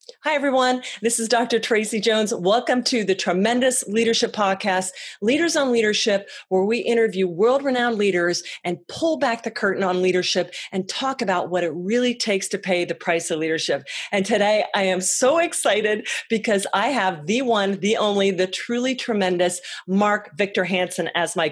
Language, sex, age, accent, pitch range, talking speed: English, female, 40-59, American, 190-240 Hz, 175 wpm